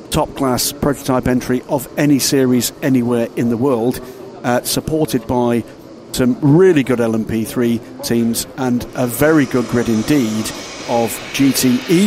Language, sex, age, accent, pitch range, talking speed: English, male, 50-69, British, 120-140 Hz, 130 wpm